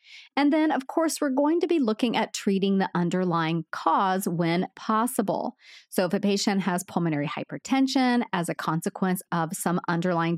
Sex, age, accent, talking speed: female, 30-49, American, 170 wpm